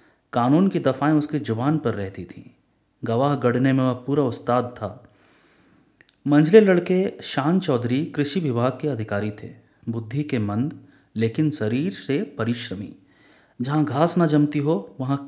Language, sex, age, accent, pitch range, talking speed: Hindi, male, 30-49, native, 120-150 Hz, 145 wpm